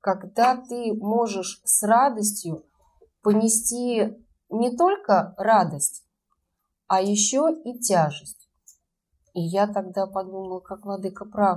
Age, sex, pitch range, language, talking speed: 30-49, female, 175-215 Hz, Russian, 105 wpm